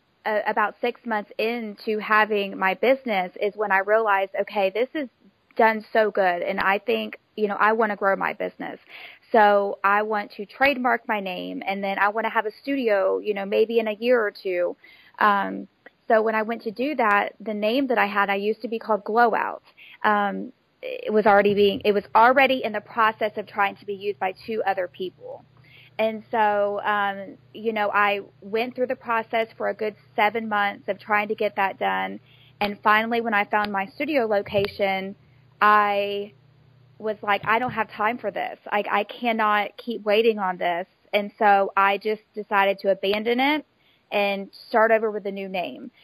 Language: English